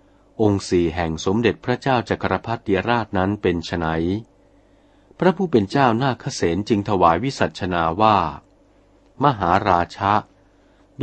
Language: Thai